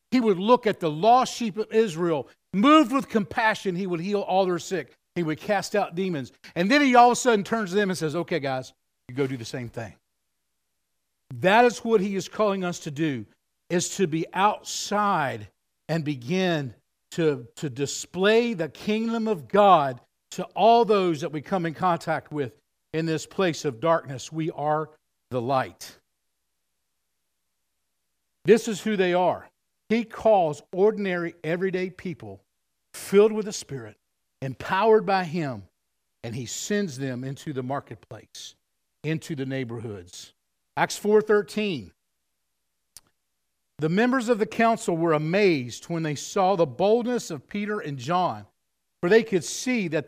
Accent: American